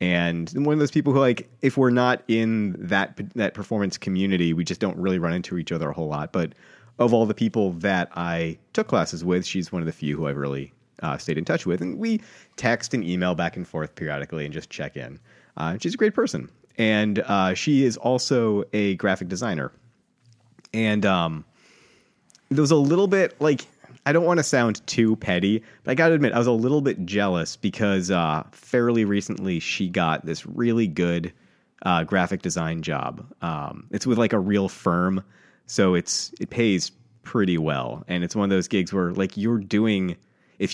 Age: 30-49